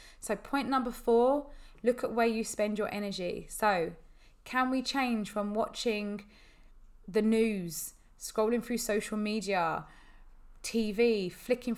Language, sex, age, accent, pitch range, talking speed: English, female, 20-39, British, 185-220 Hz, 125 wpm